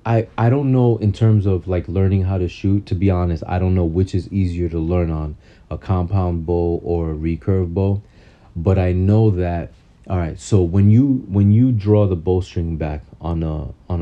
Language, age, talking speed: English, 30-49, 205 wpm